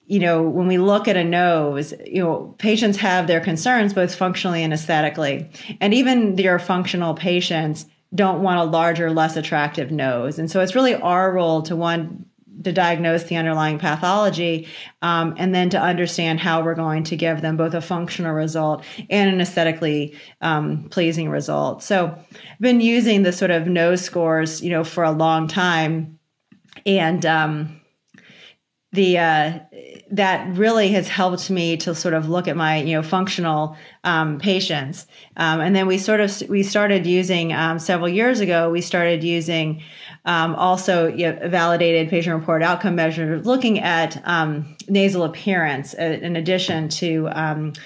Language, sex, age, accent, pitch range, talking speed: English, female, 30-49, American, 160-185 Hz, 165 wpm